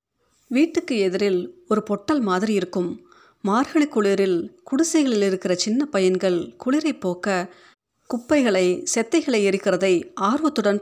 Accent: native